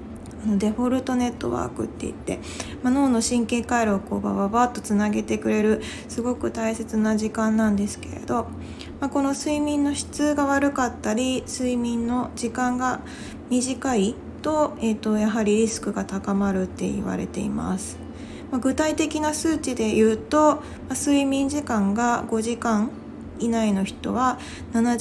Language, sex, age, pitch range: Japanese, female, 20-39, 200-260 Hz